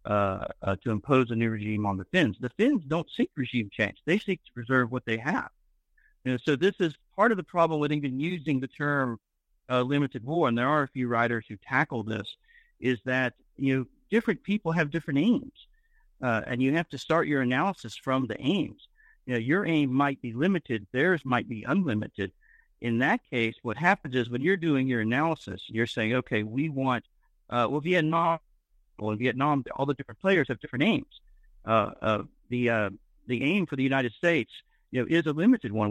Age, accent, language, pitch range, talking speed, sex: 50-69, American, English, 115-165 Hz, 210 wpm, male